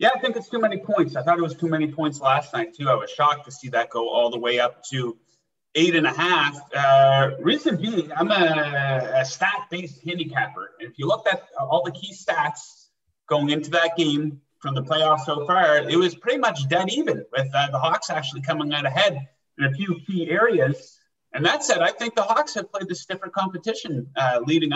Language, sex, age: English, male, 30-49